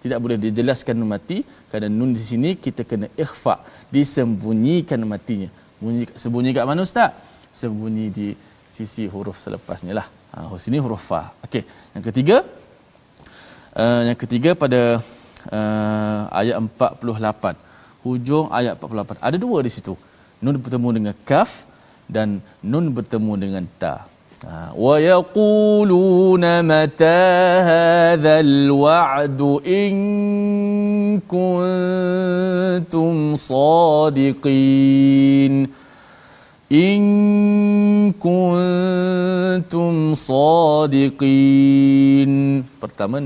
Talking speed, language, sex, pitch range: 80 wpm, Malayalam, male, 115-170 Hz